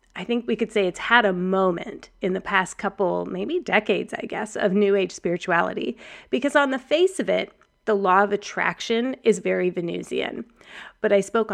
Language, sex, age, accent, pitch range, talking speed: English, female, 30-49, American, 195-265 Hz, 190 wpm